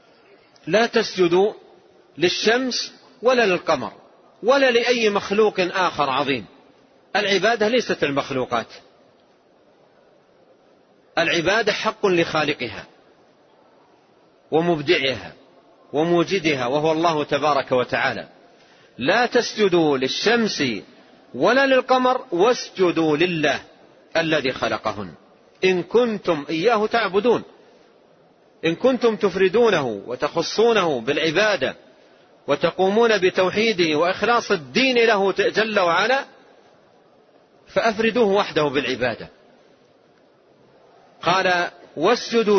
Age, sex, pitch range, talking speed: 40-59, male, 155-225 Hz, 75 wpm